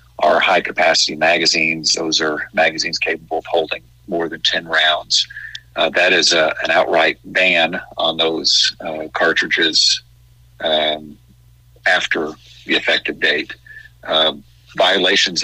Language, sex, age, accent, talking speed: English, male, 50-69, American, 120 wpm